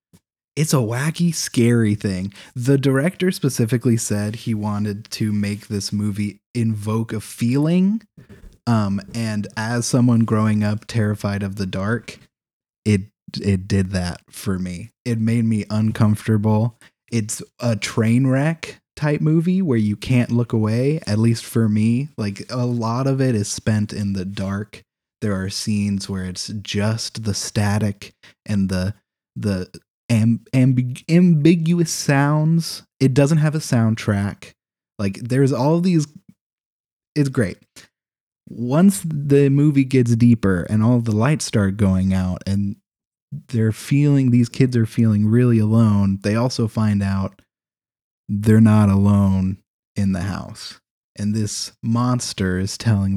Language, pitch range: English, 100-125 Hz